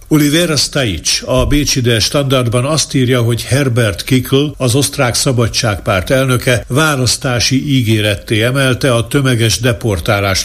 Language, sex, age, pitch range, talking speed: Hungarian, male, 60-79, 110-135 Hz, 115 wpm